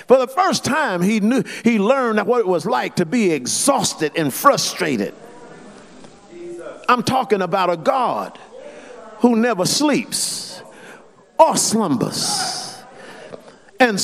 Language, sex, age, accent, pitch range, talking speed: English, male, 50-69, American, 215-295 Hz, 120 wpm